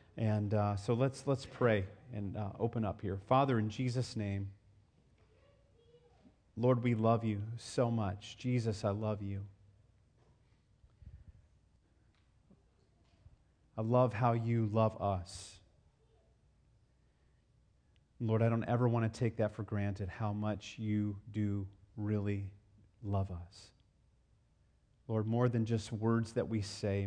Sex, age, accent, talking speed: male, 40-59, American, 125 wpm